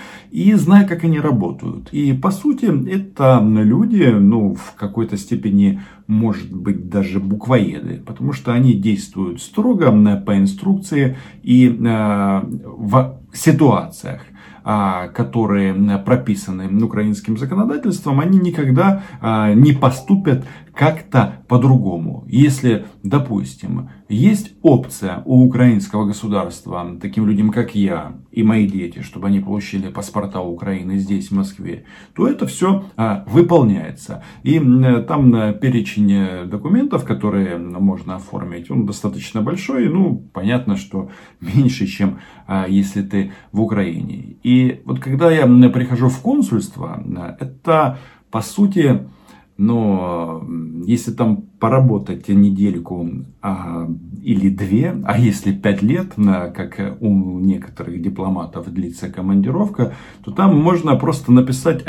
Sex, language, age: male, Russian, 40-59